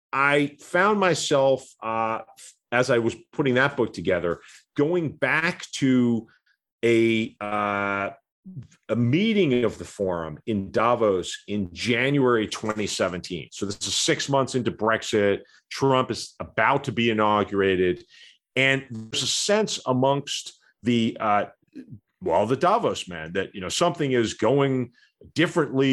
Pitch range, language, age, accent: 100-135 Hz, English, 40-59, American